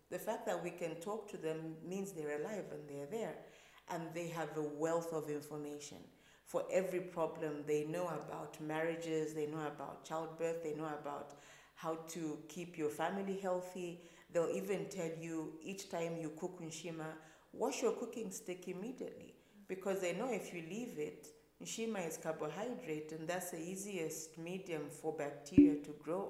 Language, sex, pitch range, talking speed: English, female, 155-185 Hz, 170 wpm